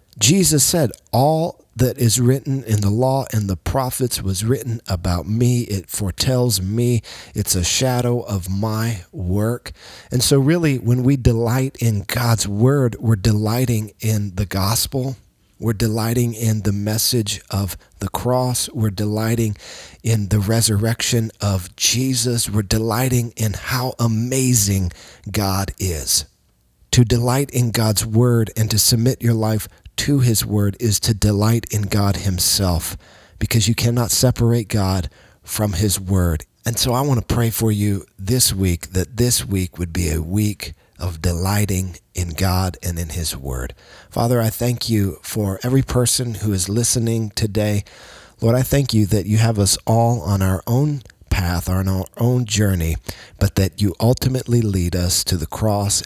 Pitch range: 95-120 Hz